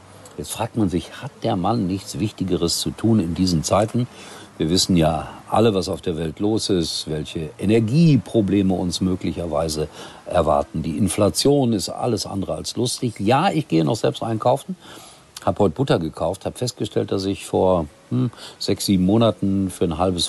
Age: 50-69